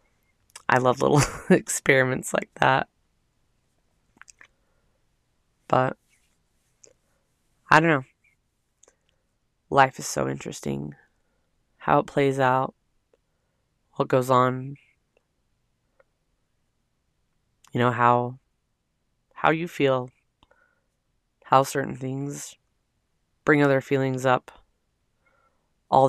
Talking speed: 80 wpm